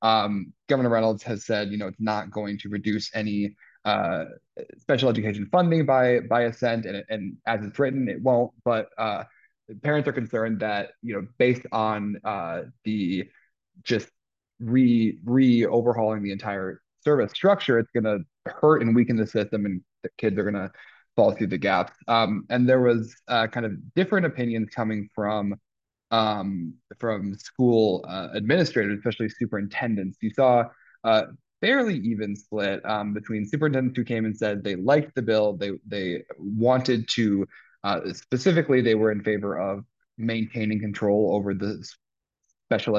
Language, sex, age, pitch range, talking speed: English, male, 20-39, 105-120 Hz, 165 wpm